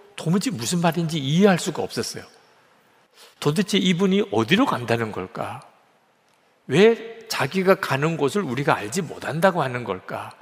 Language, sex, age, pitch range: Korean, male, 50-69, 130-195 Hz